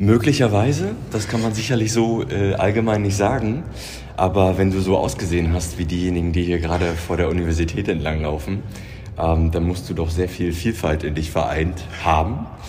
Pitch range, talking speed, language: 80-95 Hz, 175 wpm, German